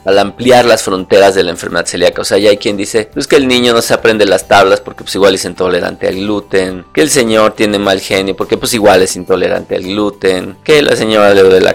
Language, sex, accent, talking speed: Spanish, male, Mexican, 250 wpm